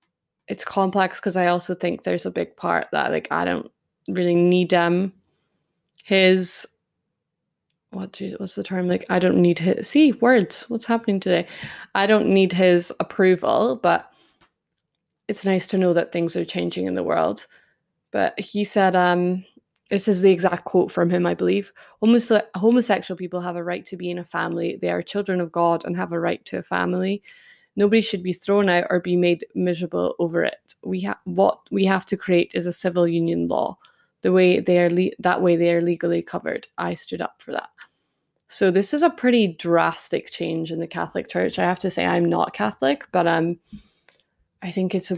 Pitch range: 175-200 Hz